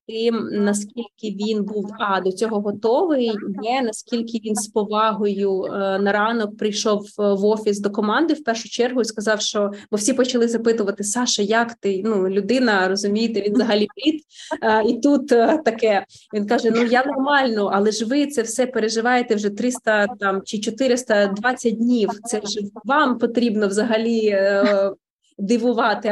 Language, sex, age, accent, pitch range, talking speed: Ukrainian, female, 20-39, native, 205-245 Hz, 155 wpm